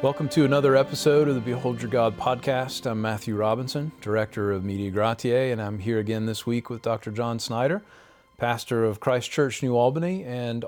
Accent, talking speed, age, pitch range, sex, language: American, 190 wpm, 40-59, 110-135 Hz, male, English